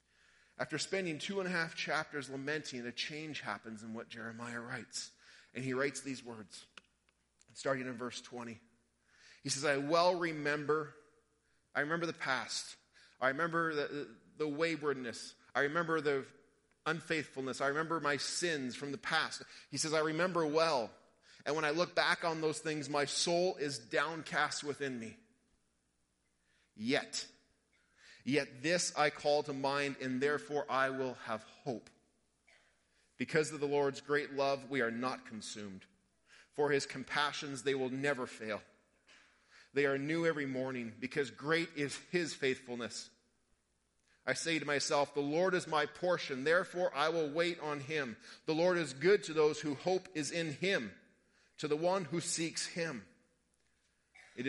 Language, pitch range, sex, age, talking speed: English, 125-160 Hz, male, 30-49, 155 wpm